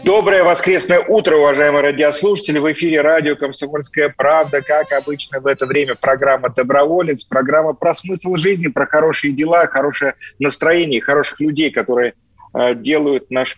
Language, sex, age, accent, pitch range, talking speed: Russian, male, 40-59, native, 130-155 Hz, 135 wpm